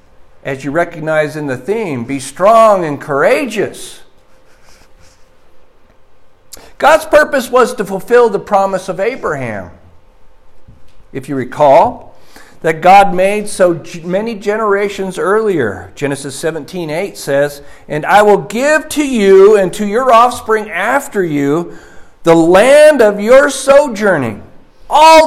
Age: 50-69